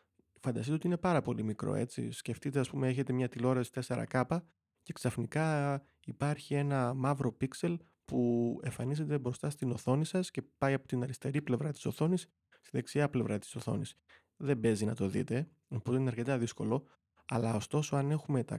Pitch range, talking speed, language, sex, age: 120-145 Hz, 170 wpm, Greek, male, 30-49